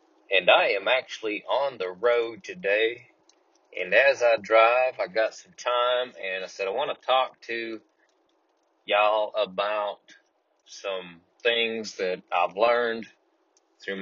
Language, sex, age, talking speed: English, male, 30-49, 135 wpm